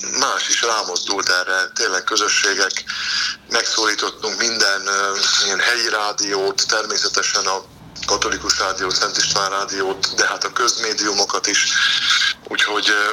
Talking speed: 105 wpm